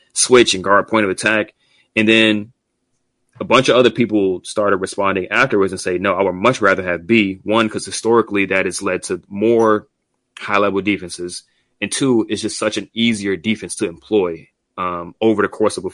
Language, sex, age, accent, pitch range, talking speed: English, male, 30-49, American, 95-120 Hz, 195 wpm